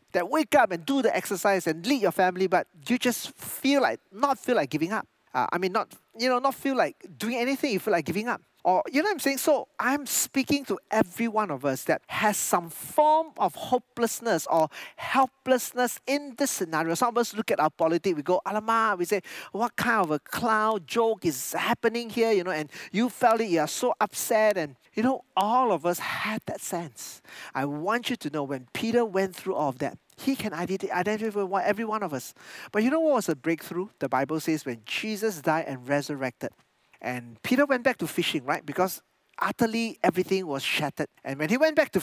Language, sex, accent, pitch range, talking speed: English, male, Malaysian, 155-240 Hz, 220 wpm